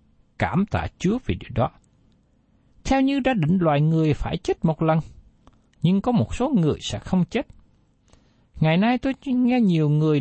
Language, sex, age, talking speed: Vietnamese, male, 60-79, 175 wpm